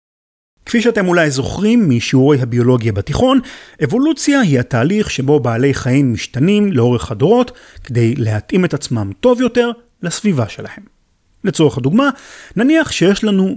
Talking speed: 130 wpm